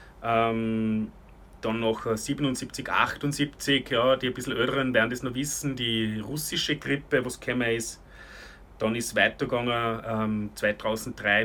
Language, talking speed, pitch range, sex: German, 135 wpm, 110-130 Hz, male